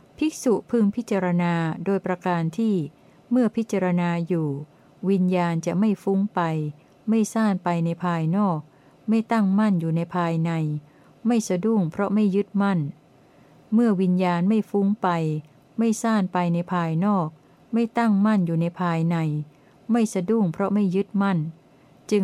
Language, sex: Thai, female